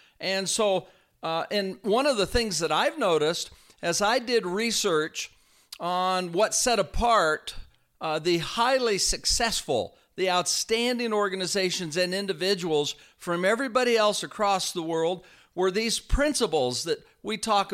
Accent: American